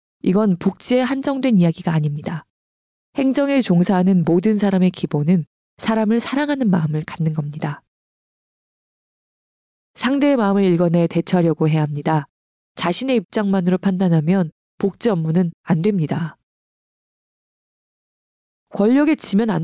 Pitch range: 160-220 Hz